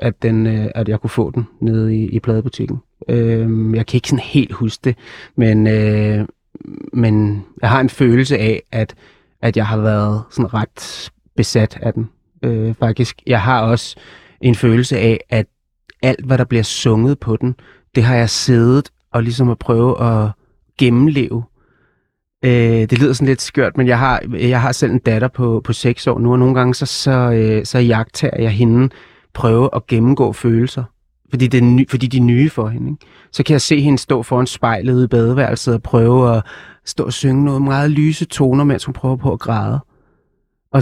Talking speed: 195 wpm